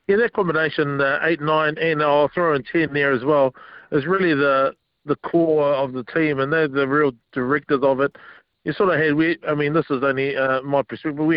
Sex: male